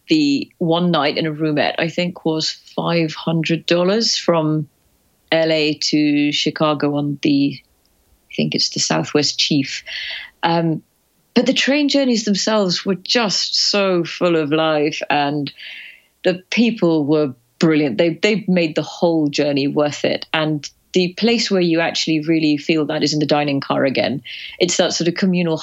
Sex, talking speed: female, 155 wpm